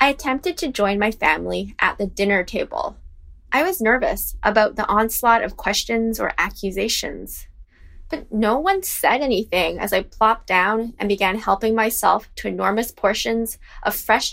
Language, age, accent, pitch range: English, 10-29, American, 185-265 Hz